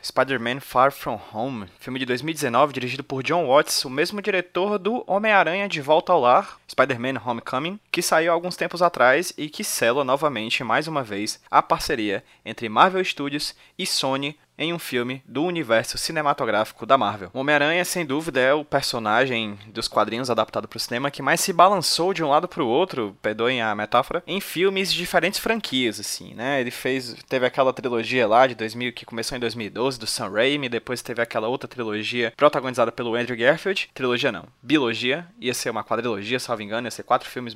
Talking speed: 190 wpm